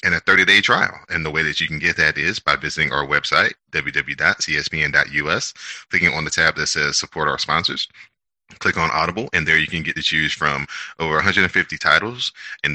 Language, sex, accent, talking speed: English, male, American, 200 wpm